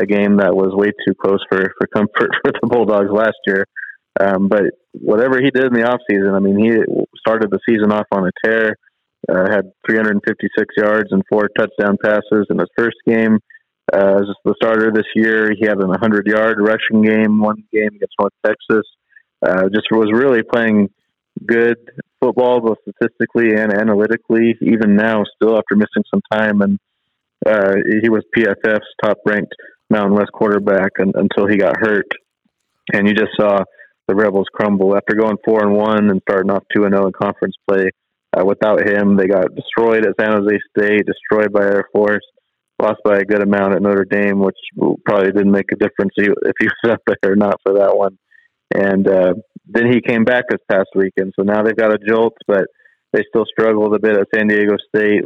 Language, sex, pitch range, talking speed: English, male, 100-110 Hz, 190 wpm